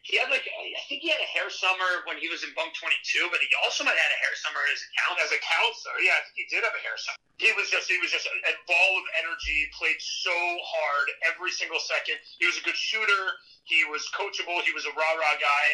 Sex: male